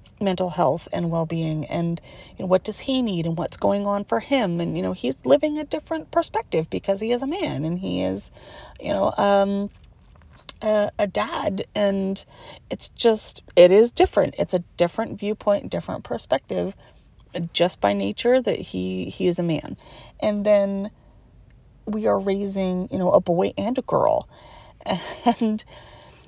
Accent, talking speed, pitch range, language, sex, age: American, 160 wpm, 170-240 Hz, English, female, 30-49